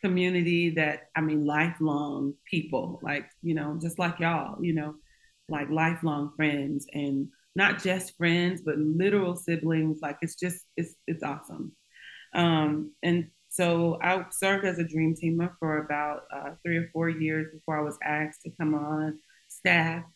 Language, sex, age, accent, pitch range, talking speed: English, female, 30-49, American, 150-170 Hz, 160 wpm